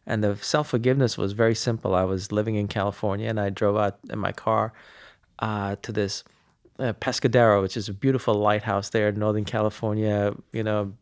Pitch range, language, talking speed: 105-125 Hz, English, 180 wpm